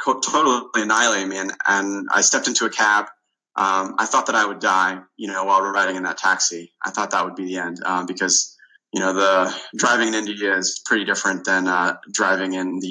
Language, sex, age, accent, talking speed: English, male, 20-39, American, 225 wpm